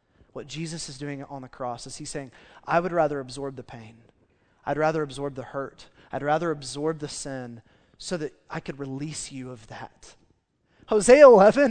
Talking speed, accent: 185 wpm, American